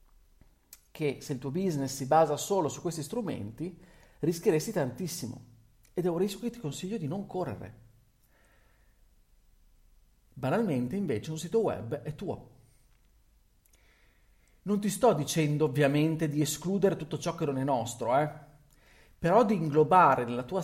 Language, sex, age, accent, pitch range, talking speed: Italian, male, 40-59, native, 115-170 Hz, 140 wpm